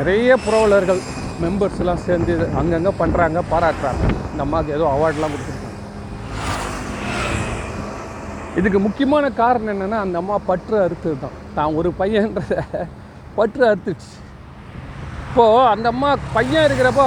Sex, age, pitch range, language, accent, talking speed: male, 40-59, 165-230 Hz, Tamil, native, 115 wpm